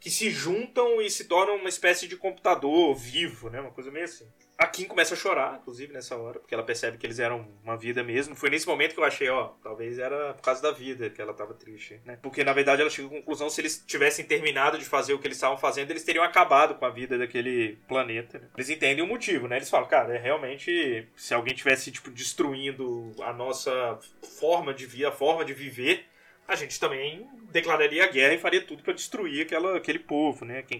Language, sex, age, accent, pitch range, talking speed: Portuguese, male, 20-39, Brazilian, 130-195 Hz, 230 wpm